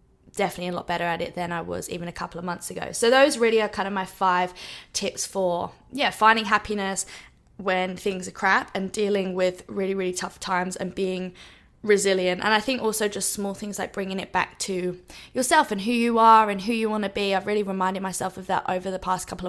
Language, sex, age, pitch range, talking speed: English, female, 20-39, 185-215 Hz, 230 wpm